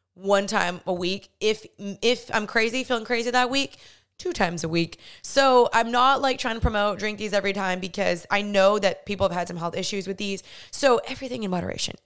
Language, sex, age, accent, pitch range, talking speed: English, female, 20-39, American, 190-225 Hz, 215 wpm